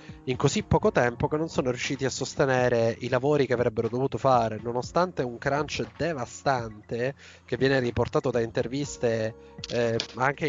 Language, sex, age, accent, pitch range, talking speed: Italian, male, 20-39, native, 120-135 Hz, 155 wpm